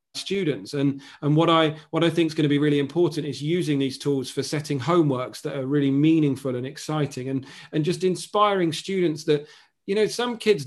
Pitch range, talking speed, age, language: 140-165 Hz, 210 wpm, 40-59, English